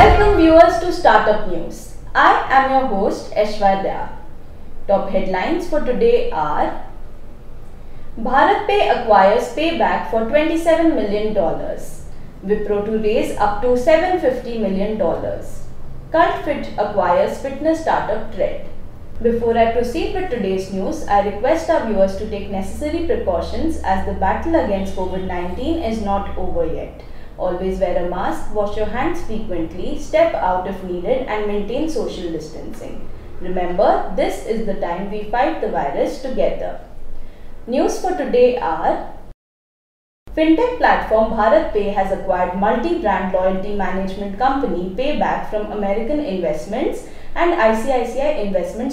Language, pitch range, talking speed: English, 195-295 Hz, 130 wpm